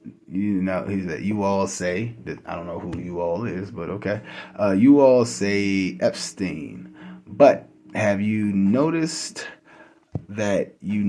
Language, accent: English, American